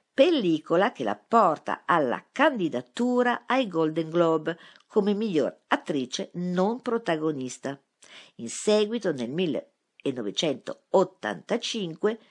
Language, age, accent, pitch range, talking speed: Italian, 50-69, native, 145-200 Hz, 85 wpm